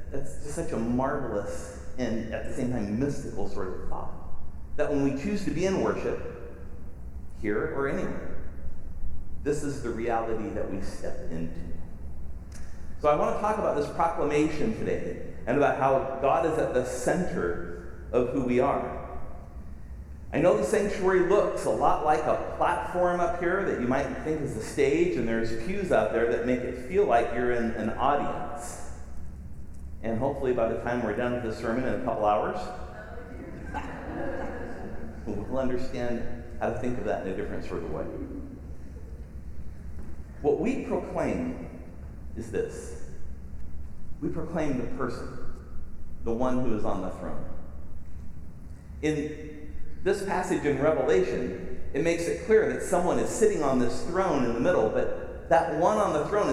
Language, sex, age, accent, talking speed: English, male, 40-59, American, 165 wpm